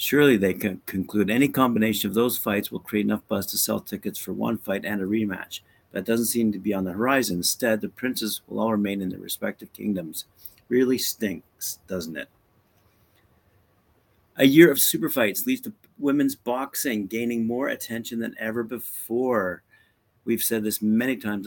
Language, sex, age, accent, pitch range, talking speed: English, male, 50-69, American, 95-115 Hz, 180 wpm